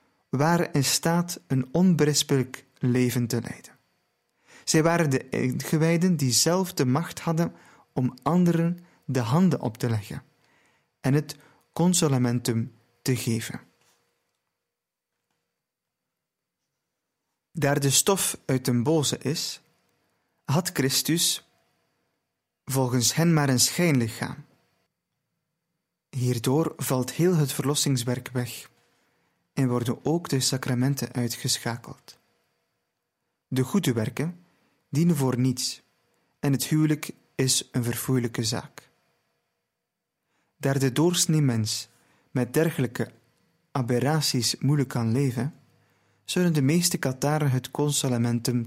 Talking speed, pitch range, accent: 105 wpm, 120-155 Hz, Dutch